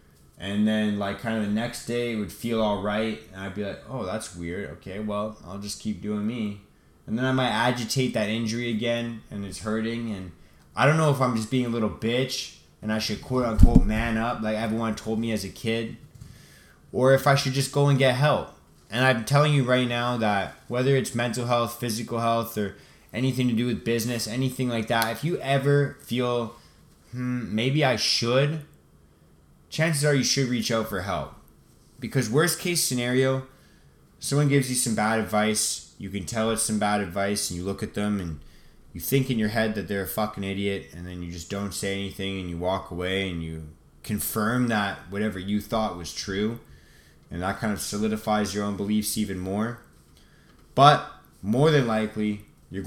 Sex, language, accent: male, English, American